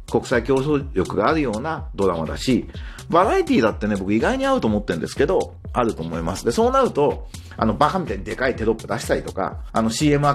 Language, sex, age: Japanese, male, 40-59